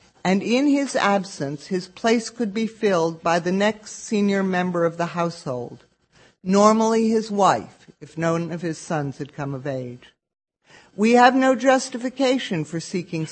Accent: American